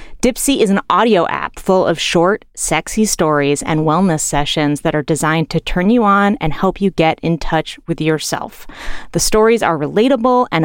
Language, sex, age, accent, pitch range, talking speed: English, female, 30-49, American, 155-220 Hz, 185 wpm